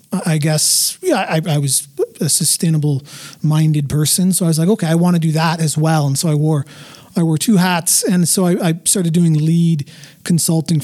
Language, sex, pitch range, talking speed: English, male, 145-180 Hz, 210 wpm